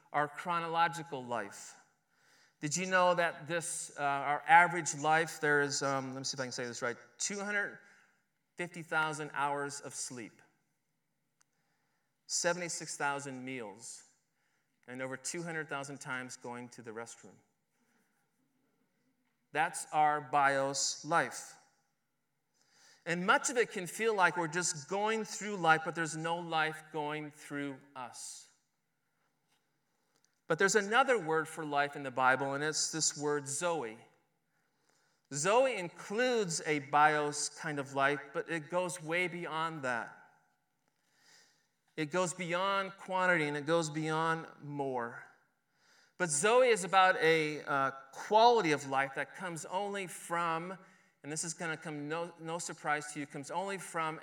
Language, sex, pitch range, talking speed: English, male, 140-175 Hz, 135 wpm